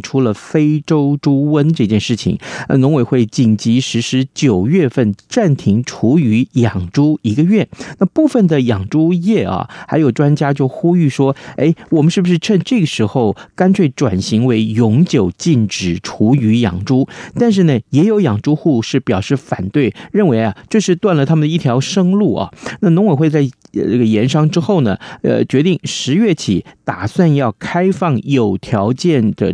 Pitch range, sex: 115-165 Hz, male